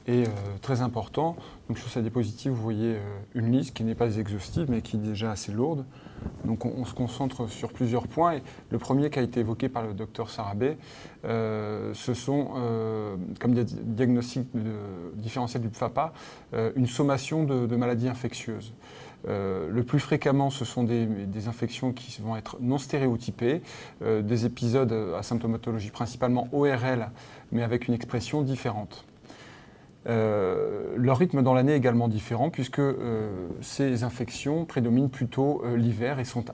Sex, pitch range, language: male, 115-135 Hz, French